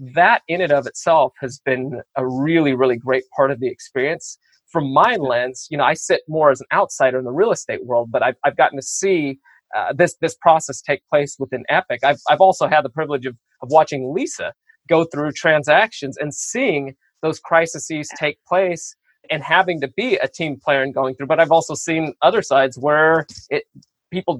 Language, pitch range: English, 135-165 Hz